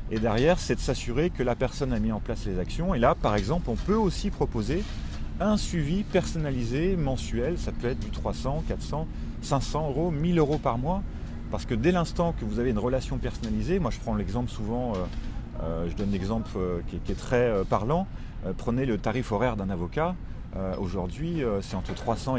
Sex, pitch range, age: male, 95-135 Hz, 30-49